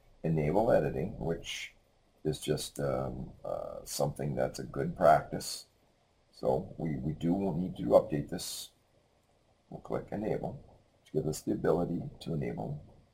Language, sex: English, male